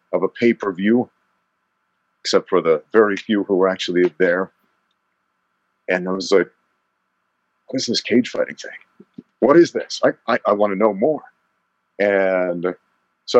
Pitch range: 90-120 Hz